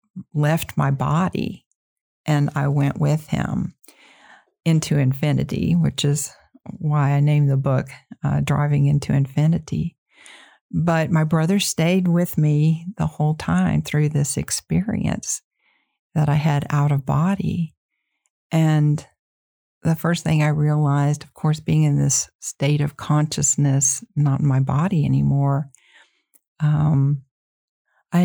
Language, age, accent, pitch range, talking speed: English, 50-69, American, 140-160 Hz, 125 wpm